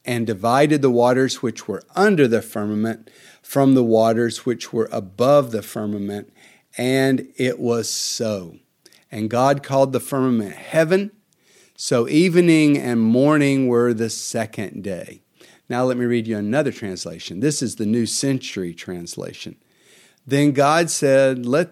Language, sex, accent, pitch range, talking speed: English, male, American, 110-135 Hz, 145 wpm